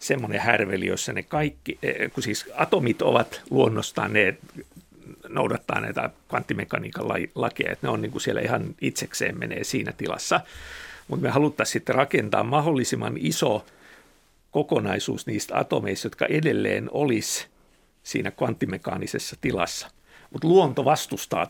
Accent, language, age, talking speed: native, Finnish, 50-69, 125 wpm